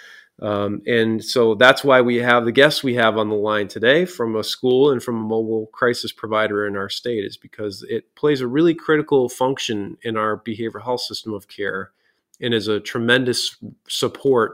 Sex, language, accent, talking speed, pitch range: male, English, American, 195 wpm, 110-135 Hz